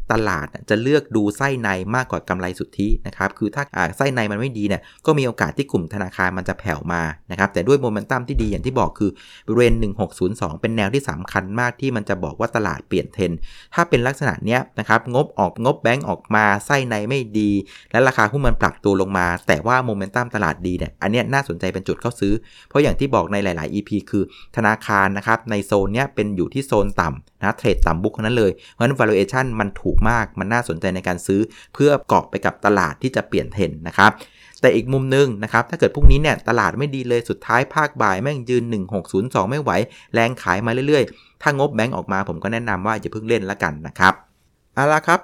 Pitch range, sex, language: 95-130 Hz, male, Thai